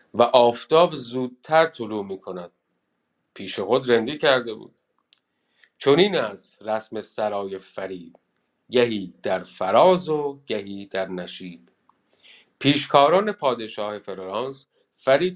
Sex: male